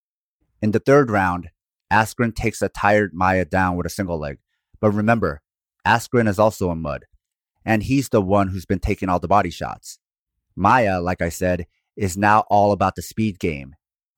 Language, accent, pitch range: English, American, 95-115 Hz